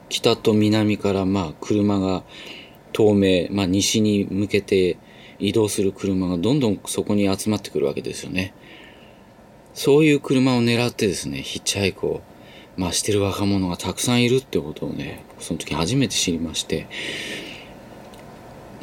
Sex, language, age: male, Japanese, 40-59